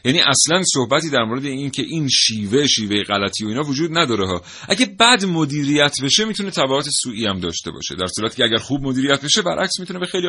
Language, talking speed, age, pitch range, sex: Persian, 215 wpm, 30-49, 110-155 Hz, male